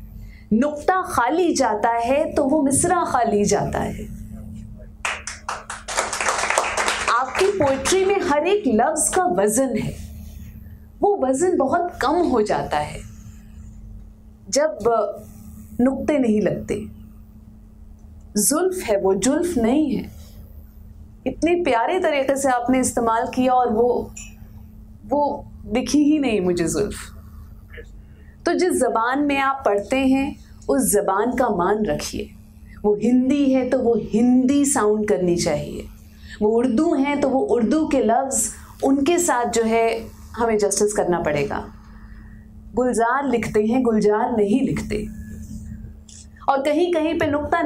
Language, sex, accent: Hindi, female, native